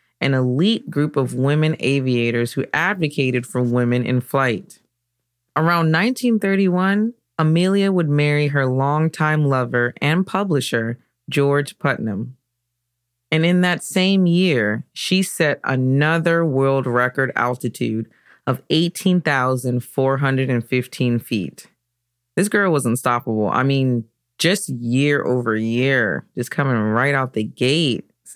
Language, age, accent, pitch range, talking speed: English, 30-49, American, 120-165 Hz, 115 wpm